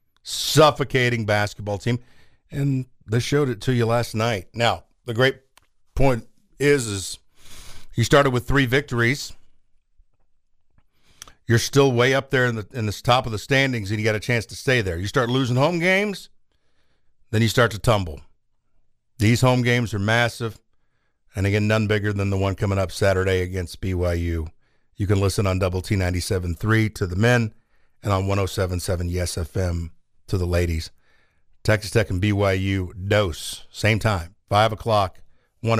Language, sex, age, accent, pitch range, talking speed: English, male, 50-69, American, 95-120 Hz, 165 wpm